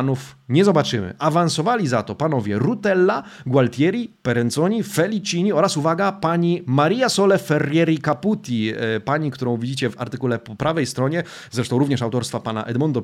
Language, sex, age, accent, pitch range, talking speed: Polish, male, 30-49, native, 120-175 Hz, 140 wpm